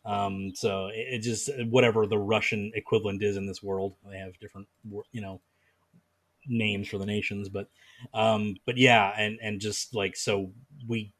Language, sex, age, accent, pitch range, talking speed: English, male, 30-49, American, 95-115 Hz, 170 wpm